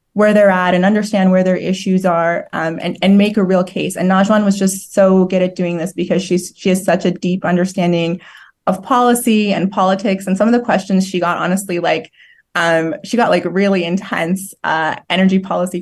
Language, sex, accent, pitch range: English, female, American, 180-205 Hz